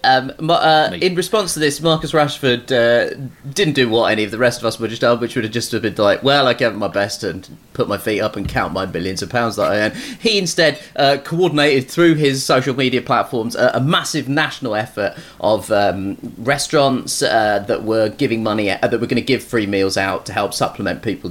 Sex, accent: male, British